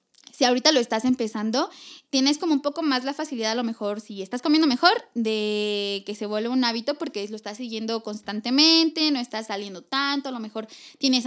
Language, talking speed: Spanish, 200 wpm